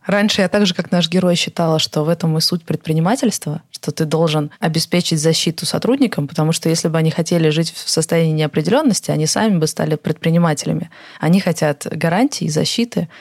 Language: Russian